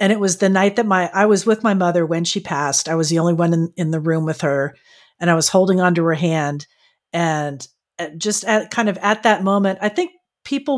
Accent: American